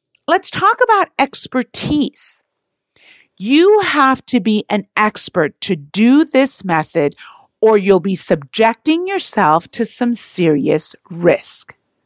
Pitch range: 180-270 Hz